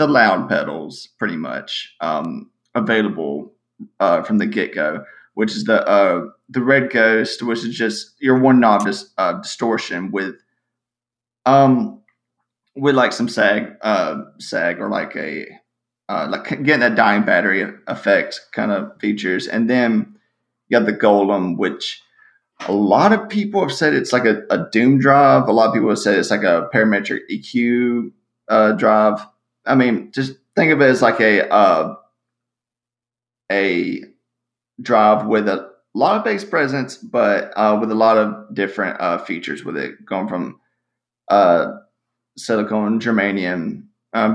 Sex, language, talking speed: male, English, 155 wpm